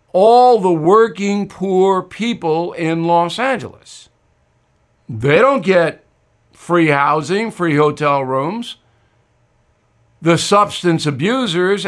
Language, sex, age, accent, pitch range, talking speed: English, male, 60-79, American, 155-220 Hz, 95 wpm